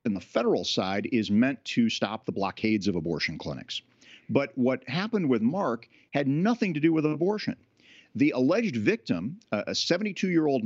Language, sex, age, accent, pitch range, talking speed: English, male, 50-69, American, 115-185 Hz, 165 wpm